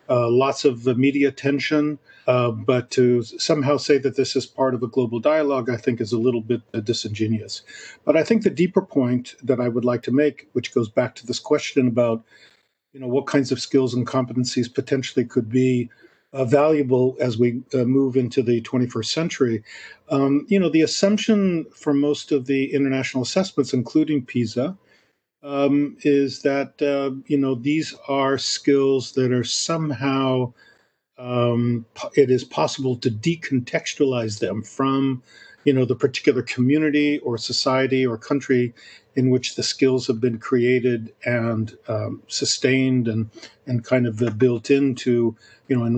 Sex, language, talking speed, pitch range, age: male, English, 165 wpm, 125-140 Hz, 50-69